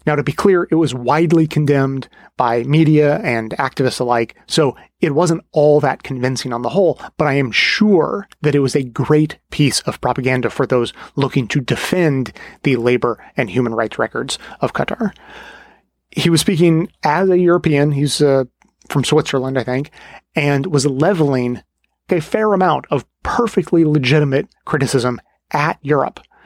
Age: 30-49